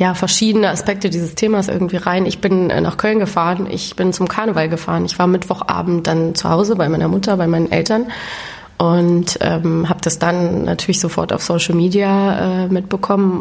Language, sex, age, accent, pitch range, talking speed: German, female, 20-39, German, 170-185 Hz, 185 wpm